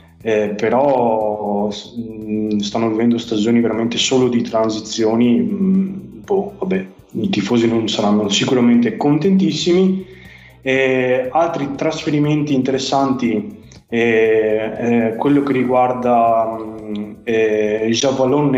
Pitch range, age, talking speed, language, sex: 110-135 Hz, 20-39, 90 wpm, Italian, male